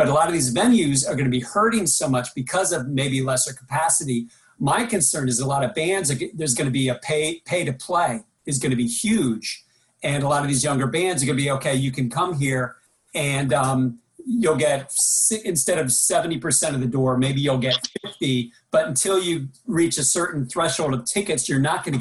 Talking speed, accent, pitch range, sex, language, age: 210 wpm, American, 130-160 Hz, male, English, 40-59